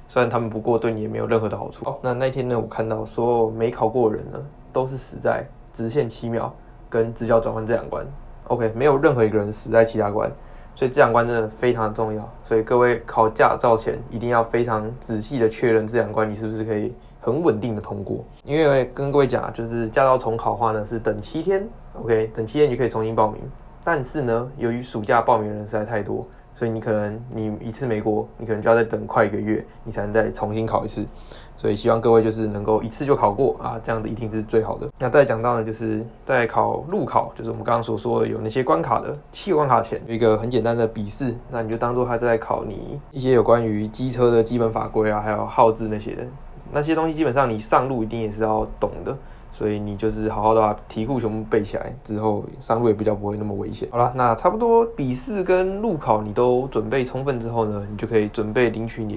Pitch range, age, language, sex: 110-120 Hz, 20-39, Chinese, male